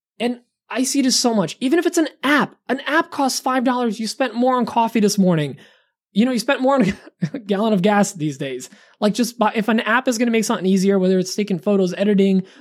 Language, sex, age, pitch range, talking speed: English, male, 20-39, 185-245 Hz, 245 wpm